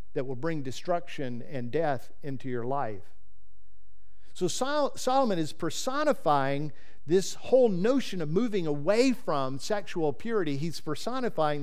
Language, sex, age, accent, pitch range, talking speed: English, male, 50-69, American, 130-180 Hz, 130 wpm